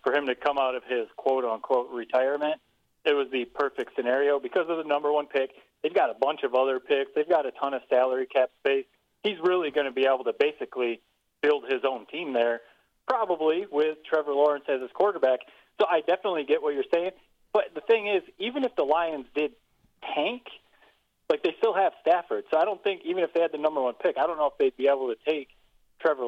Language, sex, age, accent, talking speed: English, male, 30-49, American, 225 wpm